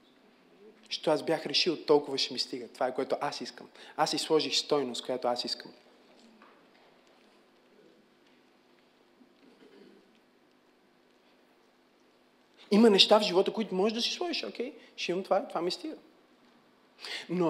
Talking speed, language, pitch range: 125 wpm, Bulgarian, 165-240 Hz